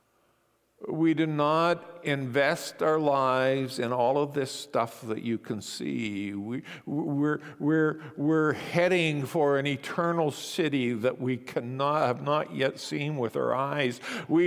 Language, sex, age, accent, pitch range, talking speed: English, male, 50-69, American, 110-155 Hz, 145 wpm